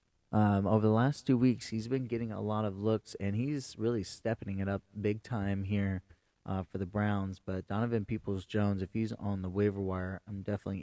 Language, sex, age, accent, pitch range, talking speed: English, male, 20-39, American, 95-115 Hz, 210 wpm